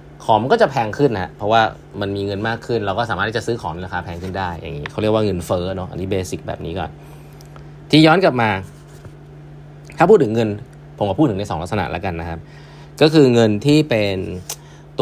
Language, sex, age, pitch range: Thai, male, 20-39, 90-140 Hz